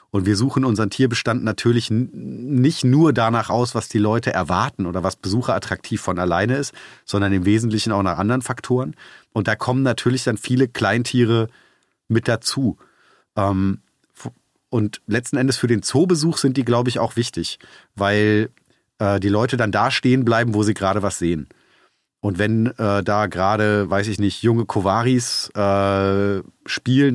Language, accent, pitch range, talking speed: German, German, 100-120 Hz, 170 wpm